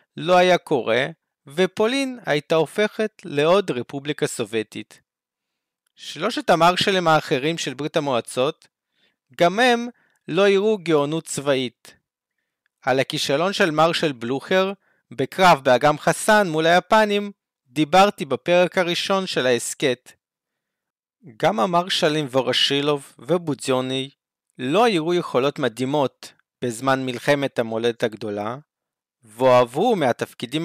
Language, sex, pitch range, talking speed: Hebrew, male, 125-175 Hz, 100 wpm